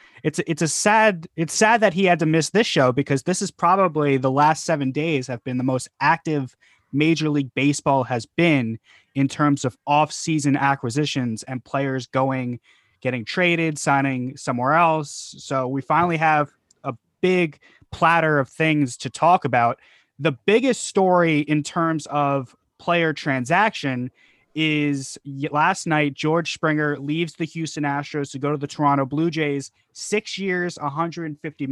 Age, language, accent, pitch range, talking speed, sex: 20-39, English, American, 135-160 Hz, 155 wpm, male